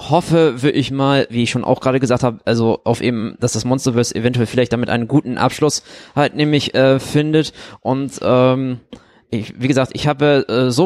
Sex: male